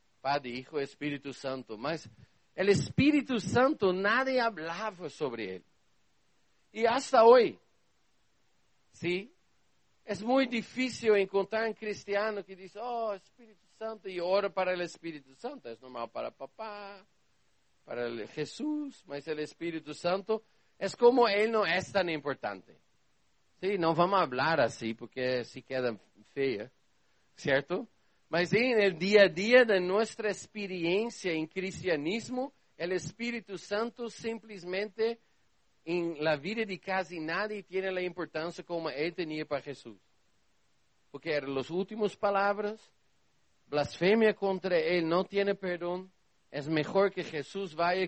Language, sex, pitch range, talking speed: Spanish, male, 155-215 Hz, 135 wpm